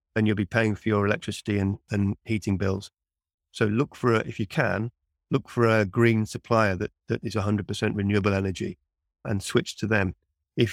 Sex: male